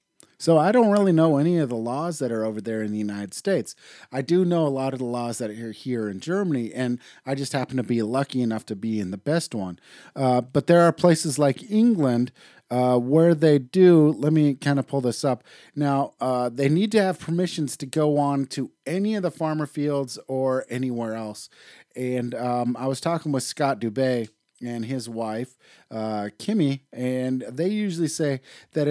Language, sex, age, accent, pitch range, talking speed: English, male, 30-49, American, 115-150 Hz, 205 wpm